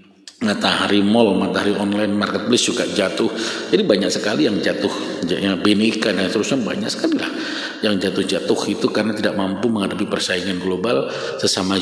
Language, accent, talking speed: Indonesian, native, 145 wpm